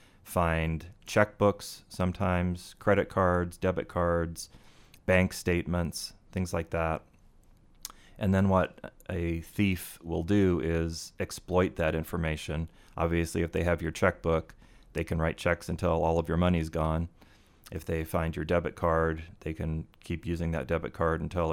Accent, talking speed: American, 150 wpm